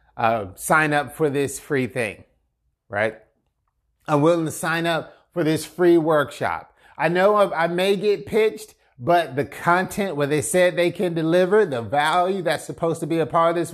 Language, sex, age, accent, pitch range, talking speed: English, male, 30-49, American, 145-195 Hz, 190 wpm